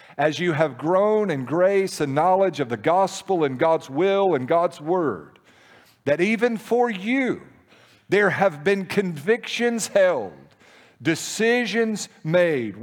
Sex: male